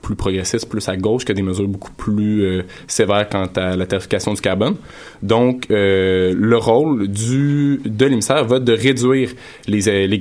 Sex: male